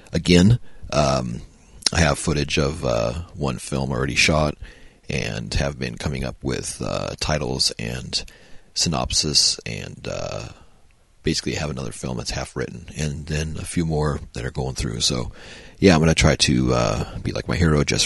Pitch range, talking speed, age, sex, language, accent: 75-90 Hz, 175 wpm, 40-59, male, English, American